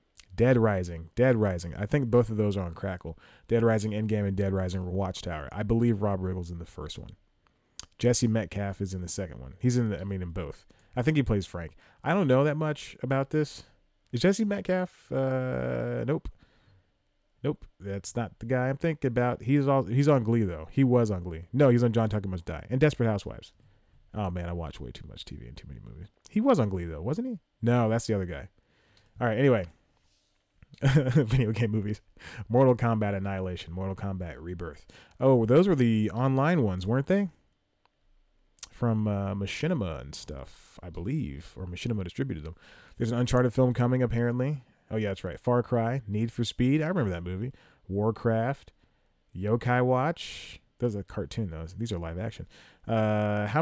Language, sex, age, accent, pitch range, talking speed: English, male, 30-49, American, 95-125 Hz, 190 wpm